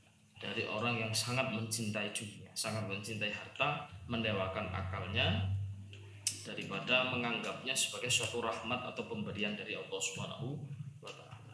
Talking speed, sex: 115 wpm, male